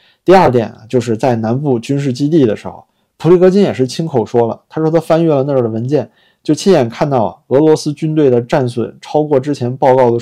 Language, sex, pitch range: Chinese, male, 115-150 Hz